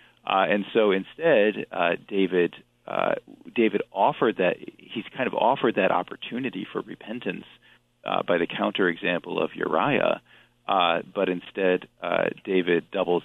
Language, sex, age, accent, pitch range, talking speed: English, male, 40-59, American, 85-120 Hz, 135 wpm